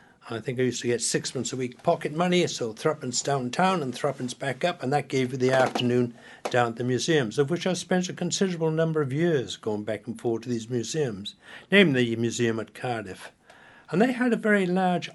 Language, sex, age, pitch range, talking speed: English, male, 60-79, 135-195 Hz, 220 wpm